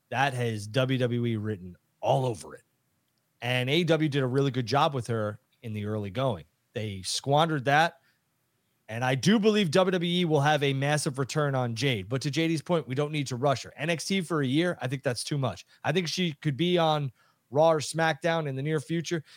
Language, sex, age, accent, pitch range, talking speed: English, male, 30-49, American, 135-180 Hz, 210 wpm